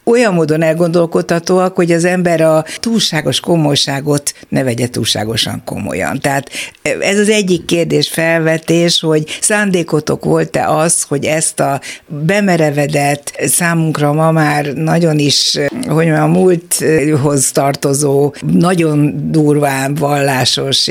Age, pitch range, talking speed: 60-79, 135-165 Hz, 110 wpm